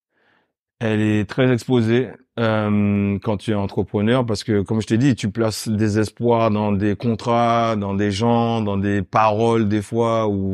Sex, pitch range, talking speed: male, 95-110 Hz, 175 wpm